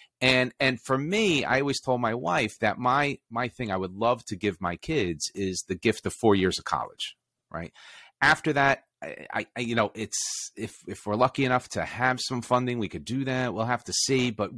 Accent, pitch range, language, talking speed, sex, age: American, 100-125 Hz, English, 220 wpm, male, 30-49